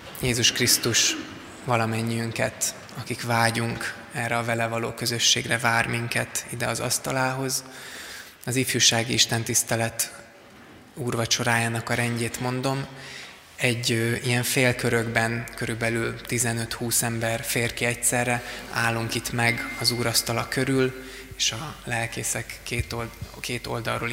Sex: male